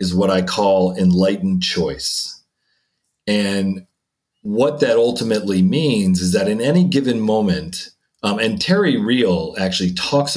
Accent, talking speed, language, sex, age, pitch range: American, 135 wpm, English, male, 40-59, 95-135 Hz